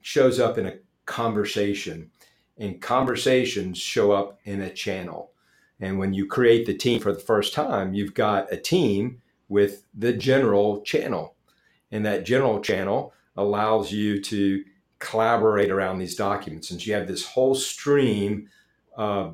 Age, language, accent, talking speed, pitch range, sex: 50-69, English, American, 150 wpm, 95-115 Hz, male